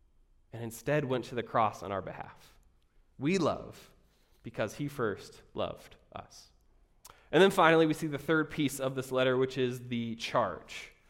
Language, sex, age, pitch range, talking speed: English, male, 20-39, 125-165 Hz, 170 wpm